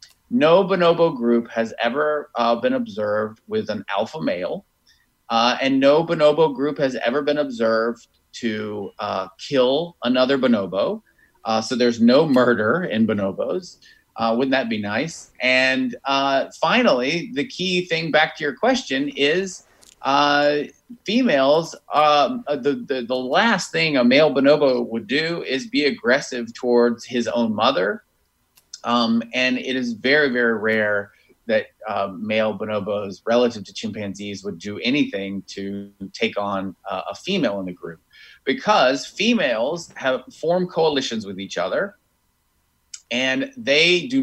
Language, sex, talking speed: English, male, 145 wpm